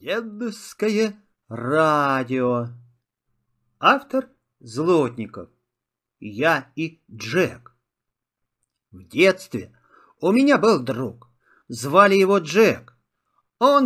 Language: Russian